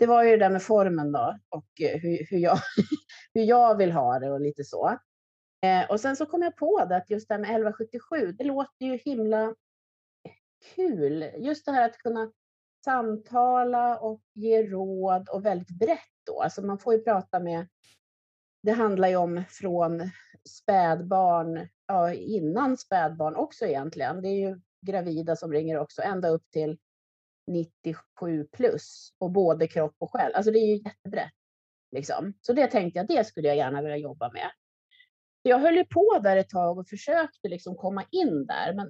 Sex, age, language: female, 30-49, Swedish